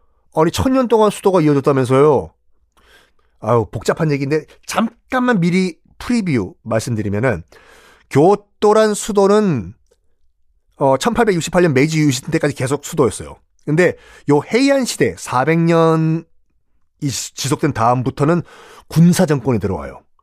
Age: 40-59